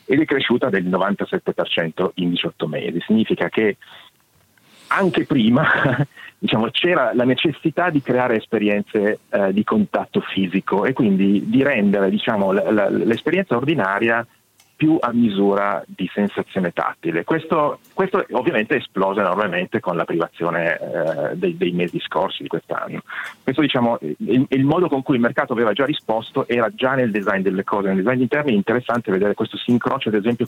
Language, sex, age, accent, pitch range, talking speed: Italian, male, 40-59, native, 95-130 Hz, 160 wpm